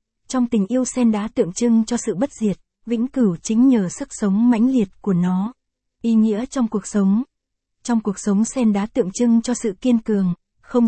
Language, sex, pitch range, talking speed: Vietnamese, female, 200-240 Hz, 210 wpm